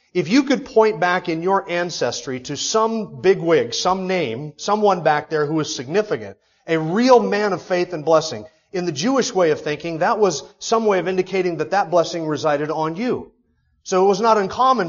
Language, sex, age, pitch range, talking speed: English, male, 30-49, 135-185 Hz, 200 wpm